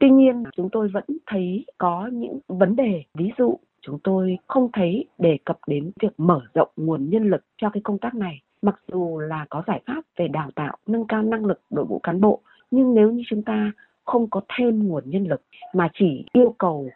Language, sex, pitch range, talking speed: Vietnamese, female, 165-220 Hz, 220 wpm